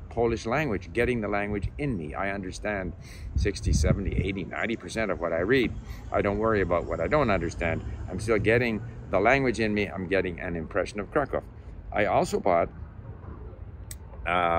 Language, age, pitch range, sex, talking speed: English, 50-69, 90-115 Hz, male, 175 wpm